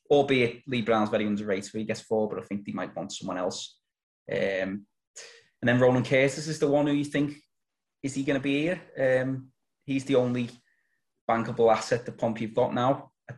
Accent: British